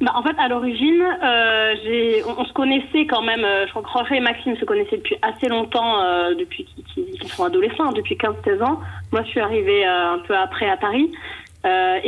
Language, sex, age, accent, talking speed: French, female, 20-39, French, 230 wpm